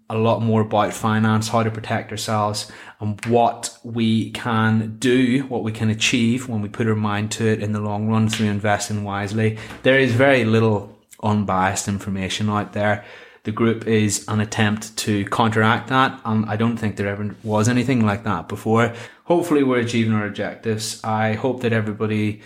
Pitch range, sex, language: 105-115 Hz, male, English